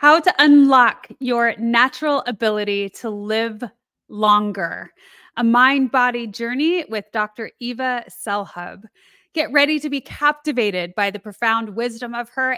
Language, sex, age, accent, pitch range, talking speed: English, female, 20-39, American, 215-275 Hz, 130 wpm